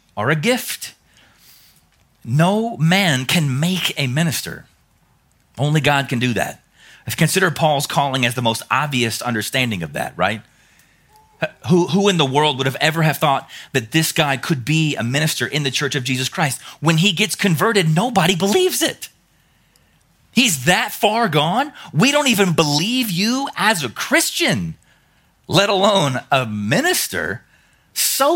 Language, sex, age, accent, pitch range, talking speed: English, male, 30-49, American, 145-220 Hz, 155 wpm